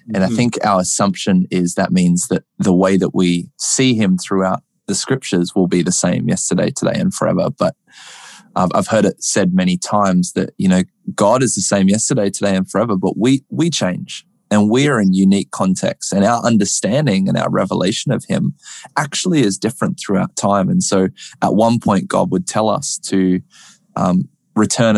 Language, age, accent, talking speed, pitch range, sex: English, 20-39, Australian, 190 wpm, 95-125 Hz, male